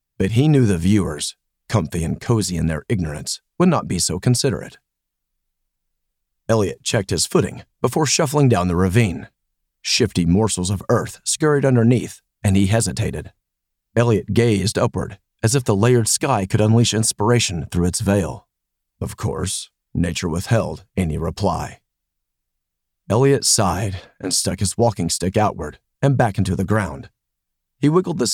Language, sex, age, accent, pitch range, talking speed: English, male, 40-59, American, 85-115 Hz, 150 wpm